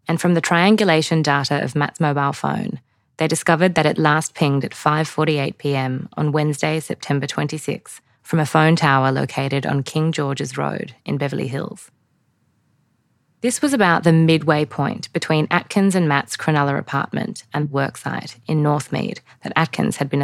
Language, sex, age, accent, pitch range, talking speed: English, female, 20-39, Australian, 140-170 Hz, 155 wpm